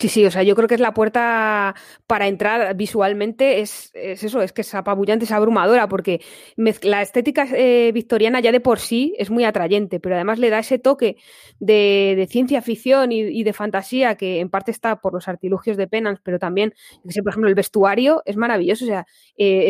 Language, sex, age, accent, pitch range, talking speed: Spanish, female, 20-39, Spanish, 200-240 Hz, 210 wpm